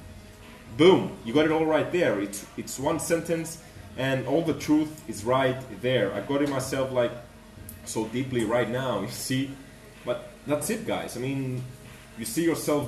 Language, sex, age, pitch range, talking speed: English, male, 30-49, 120-150 Hz, 175 wpm